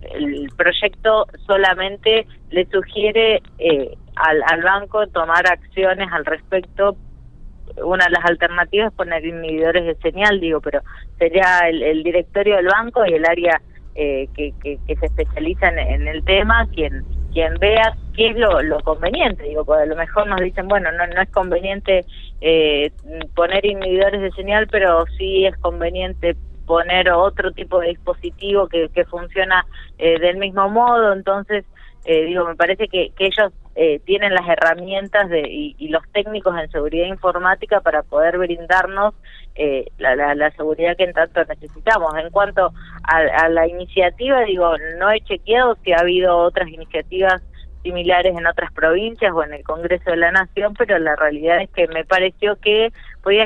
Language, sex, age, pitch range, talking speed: Spanish, female, 20-39, 165-200 Hz, 170 wpm